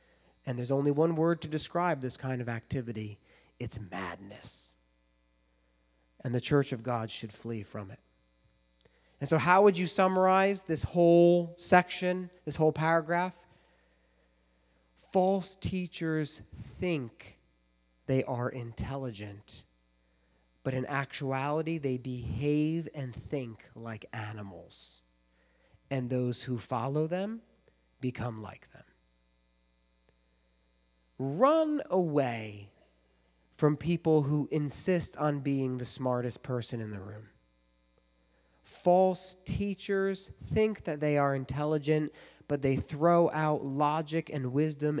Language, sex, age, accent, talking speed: English, male, 30-49, American, 115 wpm